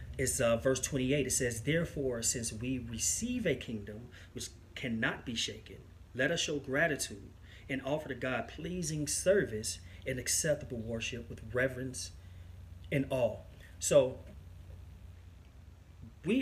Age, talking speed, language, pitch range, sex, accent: 30-49, 130 wpm, English, 105-140 Hz, male, American